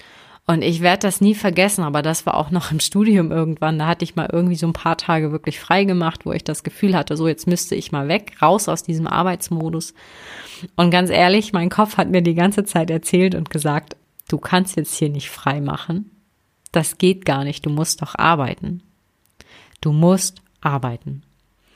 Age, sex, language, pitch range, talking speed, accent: 30-49, female, German, 160-195 Hz, 200 wpm, German